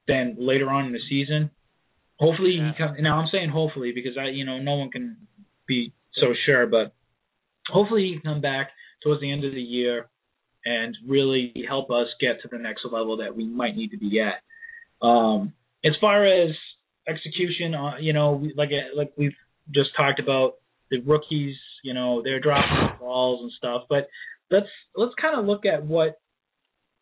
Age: 20-39